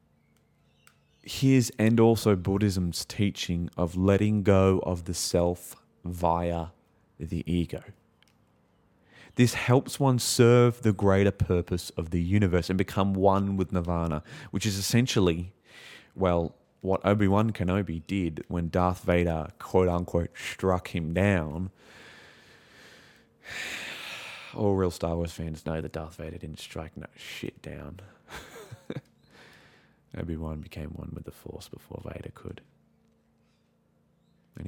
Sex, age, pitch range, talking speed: male, 20-39, 85-105 Hz, 120 wpm